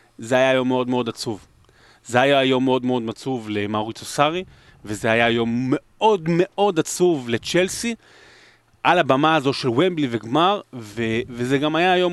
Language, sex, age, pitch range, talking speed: Hebrew, male, 30-49, 120-160 Hz, 165 wpm